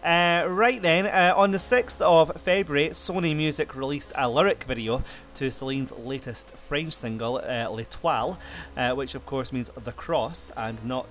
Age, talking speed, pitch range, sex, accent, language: 30-49, 160 wpm, 120-160 Hz, male, British, English